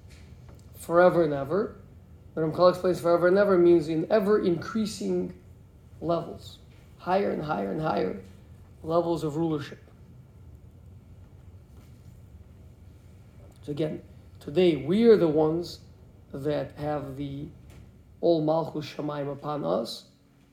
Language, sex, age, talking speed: English, male, 50-69, 105 wpm